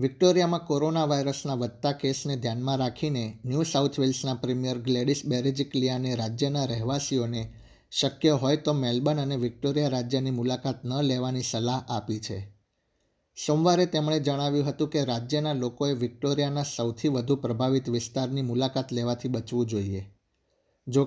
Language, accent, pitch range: Gujarati, native, 120-145 Hz